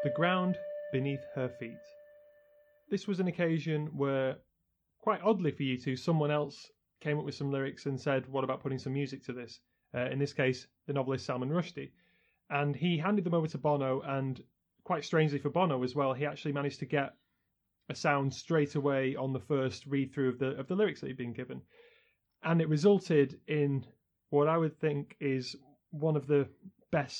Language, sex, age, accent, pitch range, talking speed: English, male, 30-49, British, 135-165 Hz, 195 wpm